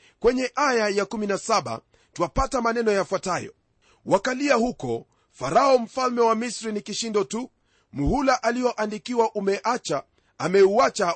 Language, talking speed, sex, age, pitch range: Swahili, 110 wpm, male, 40-59, 195-245 Hz